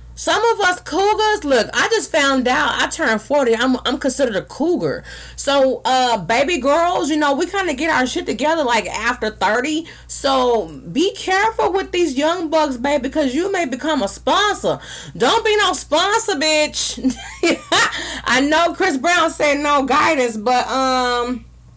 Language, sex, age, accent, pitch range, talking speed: English, female, 20-39, American, 180-275 Hz, 170 wpm